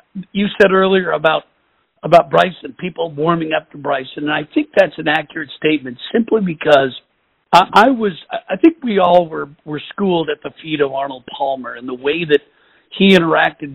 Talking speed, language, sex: 190 wpm, English, male